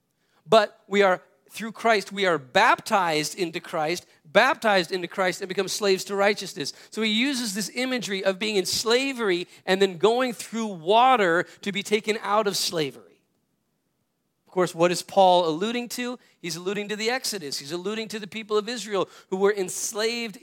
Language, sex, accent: English, male, American